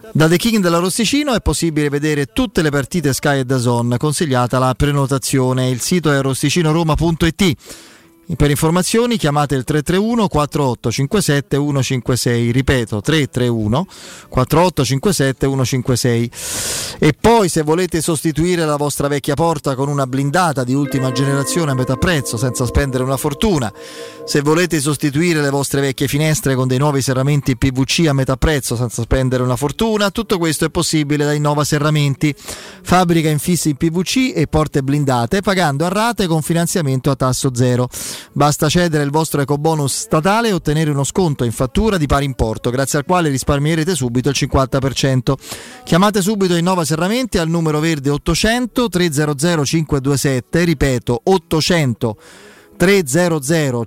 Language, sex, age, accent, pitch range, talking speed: Italian, male, 30-49, native, 135-175 Hz, 145 wpm